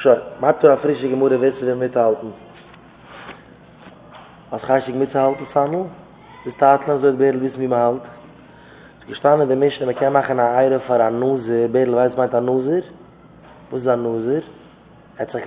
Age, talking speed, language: 20-39, 85 wpm, English